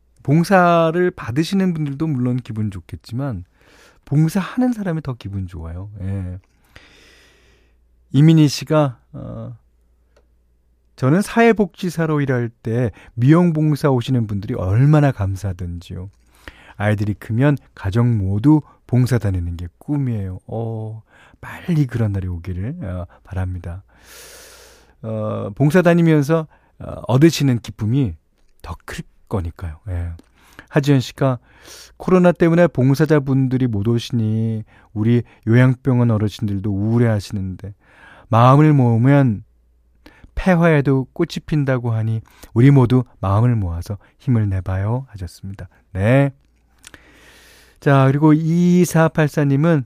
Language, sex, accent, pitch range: Korean, male, native, 100-150 Hz